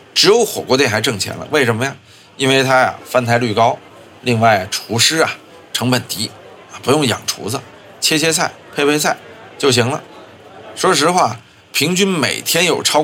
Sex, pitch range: male, 110-150 Hz